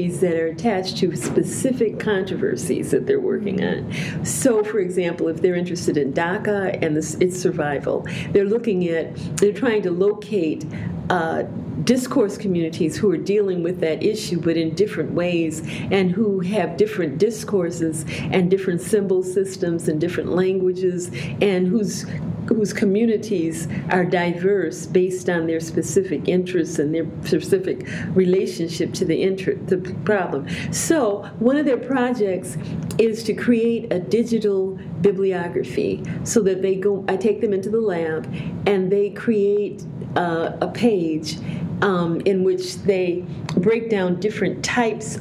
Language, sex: English, female